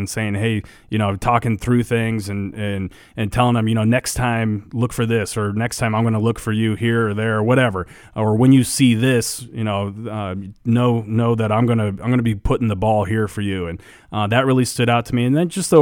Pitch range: 105-120 Hz